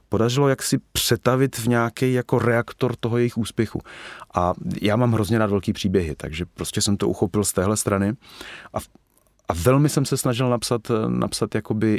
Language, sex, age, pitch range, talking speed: Czech, male, 30-49, 95-120 Hz, 175 wpm